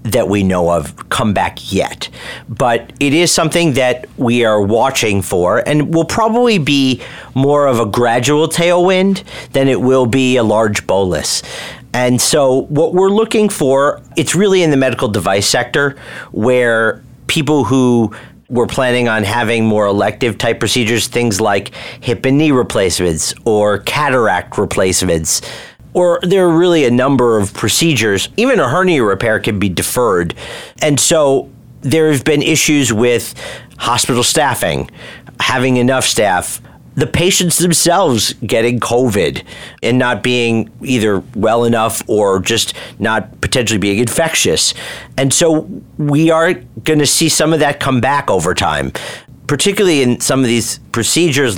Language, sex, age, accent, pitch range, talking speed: English, male, 40-59, American, 115-155 Hz, 150 wpm